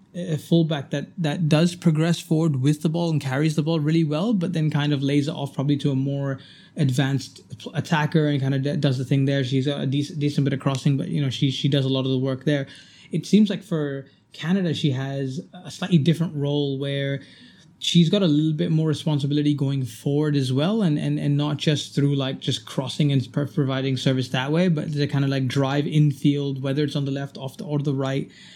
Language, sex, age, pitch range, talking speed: English, male, 20-39, 140-155 Hz, 235 wpm